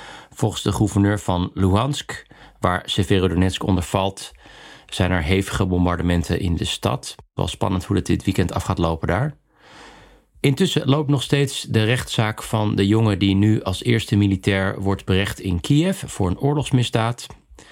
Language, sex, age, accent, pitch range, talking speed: Dutch, male, 40-59, Dutch, 90-110 Hz, 160 wpm